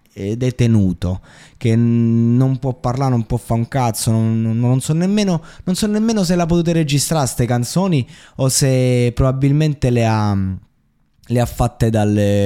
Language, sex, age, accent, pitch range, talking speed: Italian, male, 20-39, native, 105-140 Hz, 160 wpm